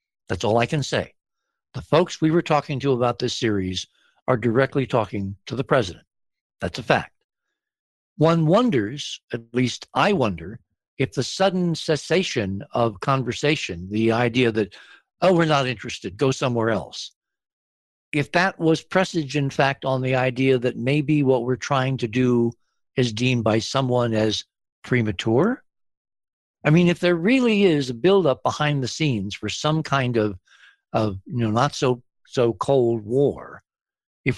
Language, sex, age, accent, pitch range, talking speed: English, male, 60-79, American, 120-150 Hz, 160 wpm